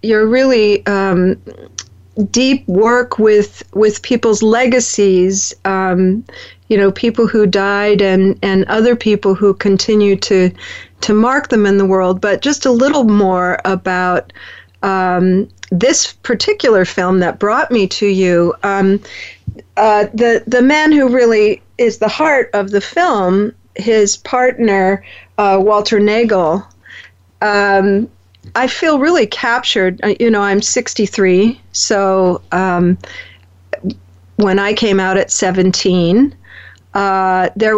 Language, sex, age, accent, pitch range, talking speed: English, female, 40-59, American, 185-230 Hz, 125 wpm